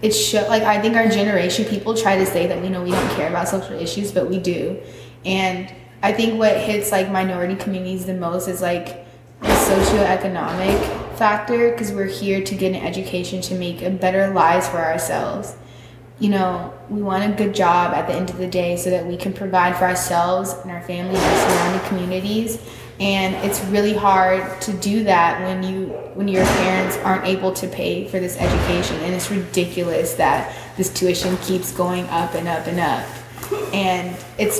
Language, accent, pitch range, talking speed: English, American, 180-205 Hz, 195 wpm